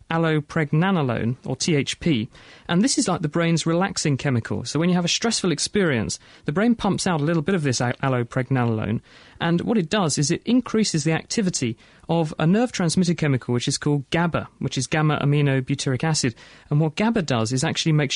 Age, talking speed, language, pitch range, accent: 30-49, 195 wpm, English, 130-170 Hz, British